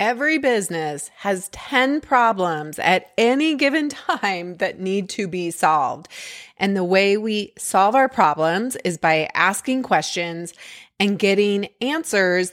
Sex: female